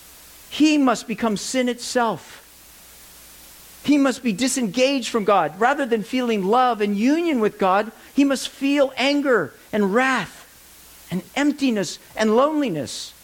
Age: 50-69